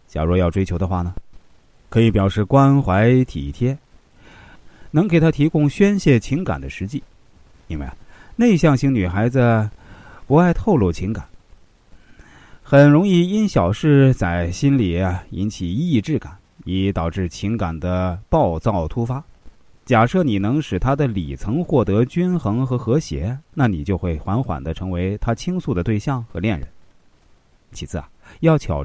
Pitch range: 90-135 Hz